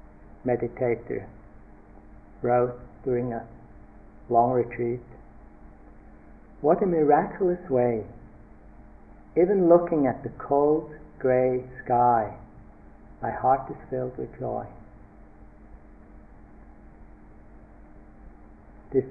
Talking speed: 75 wpm